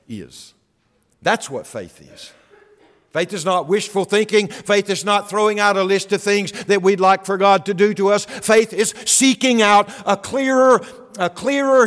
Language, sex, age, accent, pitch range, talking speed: English, male, 60-79, American, 130-220 Hz, 180 wpm